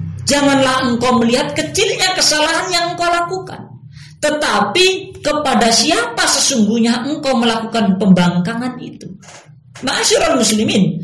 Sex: female